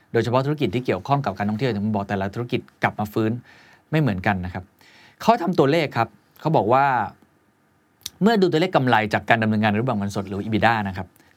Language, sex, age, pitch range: Thai, male, 20-39, 100-140 Hz